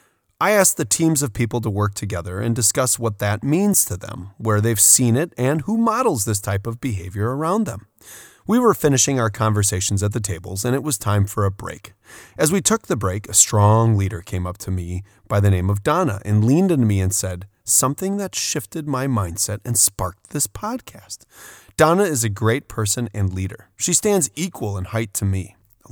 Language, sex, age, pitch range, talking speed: English, male, 30-49, 100-130 Hz, 210 wpm